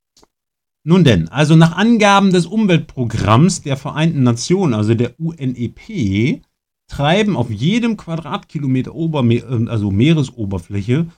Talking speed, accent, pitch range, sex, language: 95 wpm, German, 105-165 Hz, male, German